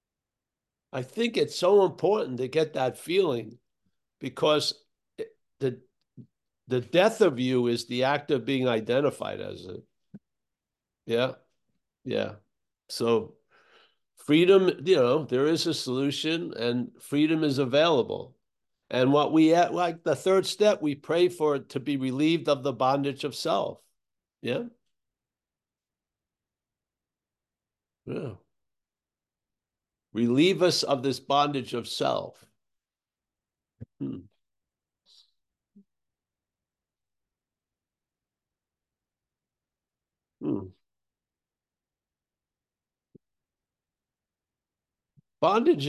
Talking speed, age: 90 wpm, 60-79